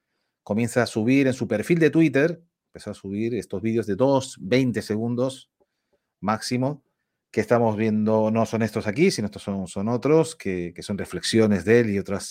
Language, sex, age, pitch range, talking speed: English, male, 40-59, 100-140 Hz, 185 wpm